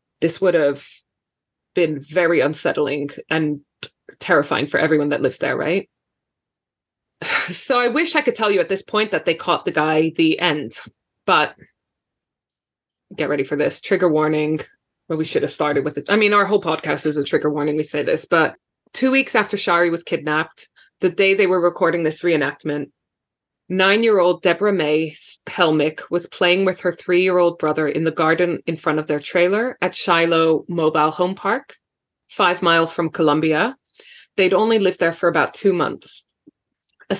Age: 20-39